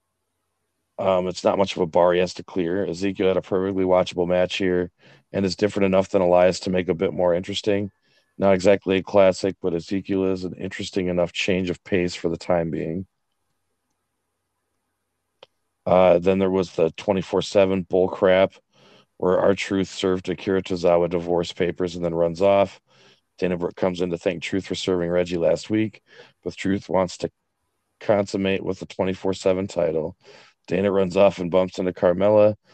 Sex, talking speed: male, 175 wpm